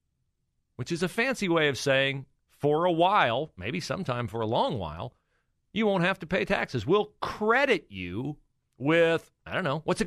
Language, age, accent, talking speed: English, 40-59, American, 185 wpm